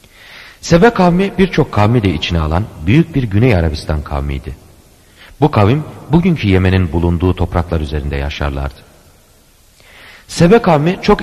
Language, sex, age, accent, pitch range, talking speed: Turkish, male, 40-59, native, 80-115 Hz, 125 wpm